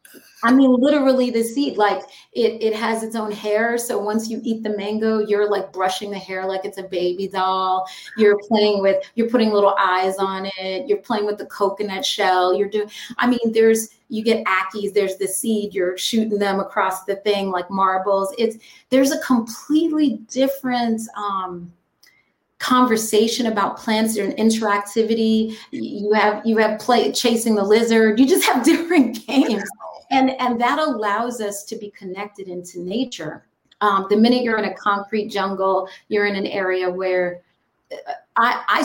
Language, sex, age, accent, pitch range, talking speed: English, female, 30-49, American, 195-245 Hz, 170 wpm